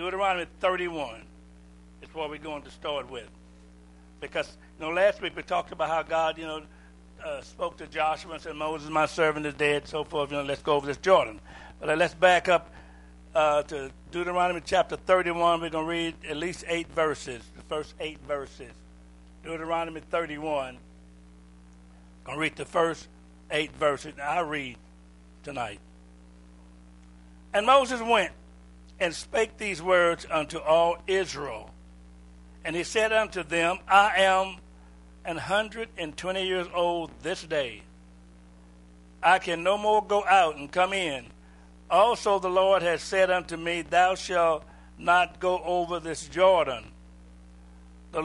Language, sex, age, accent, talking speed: English, male, 60-79, American, 155 wpm